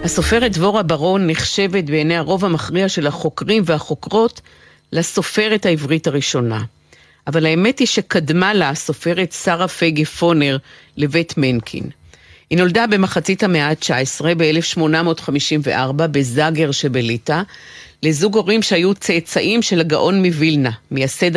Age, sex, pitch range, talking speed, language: 50-69, female, 150-195 Hz, 110 wpm, Hebrew